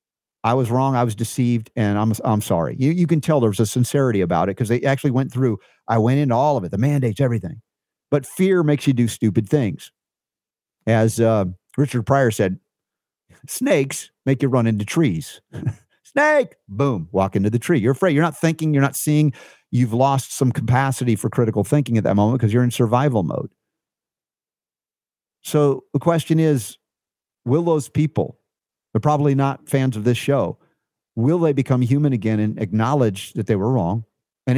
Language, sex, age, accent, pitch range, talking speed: English, male, 50-69, American, 110-145 Hz, 185 wpm